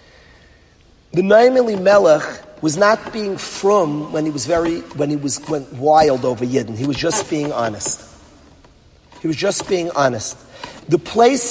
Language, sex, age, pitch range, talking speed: English, male, 40-59, 135-175 Hz, 160 wpm